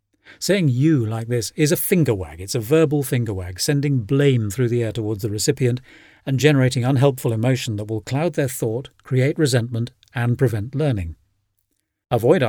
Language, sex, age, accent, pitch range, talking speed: English, male, 40-59, British, 105-140 Hz, 175 wpm